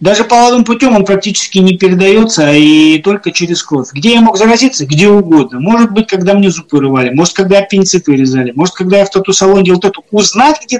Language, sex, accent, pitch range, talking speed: Russian, male, native, 165-220 Hz, 210 wpm